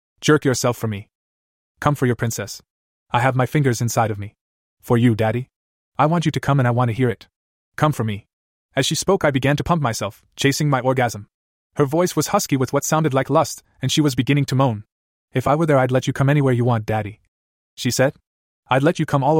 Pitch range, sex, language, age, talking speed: 110-145 Hz, male, English, 30-49, 240 wpm